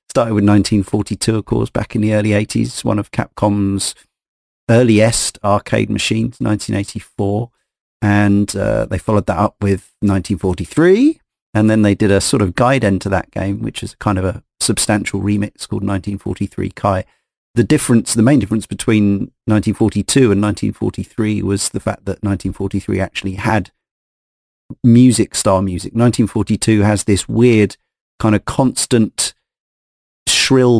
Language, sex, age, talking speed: English, male, 40-59, 145 wpm